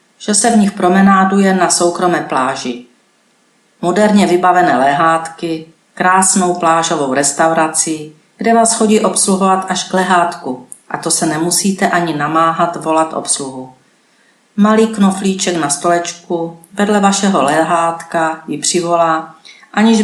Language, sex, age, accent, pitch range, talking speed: Czech, female, 40-59, native, 160-190 Hz, 115 wpm